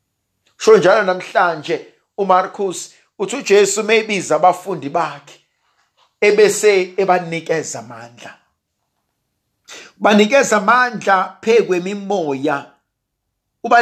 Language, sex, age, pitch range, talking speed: English, male, 50-69, 180-250 Hz, 85 wpm